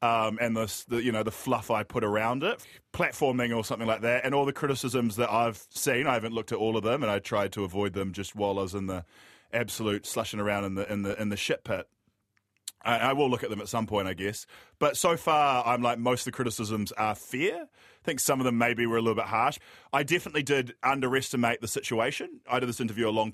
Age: 20-39